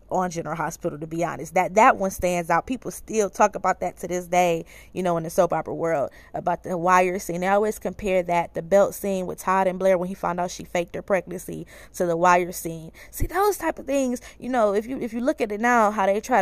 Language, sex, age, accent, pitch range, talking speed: English, female, 20-39, American, 175-220 Hz, 260 wpm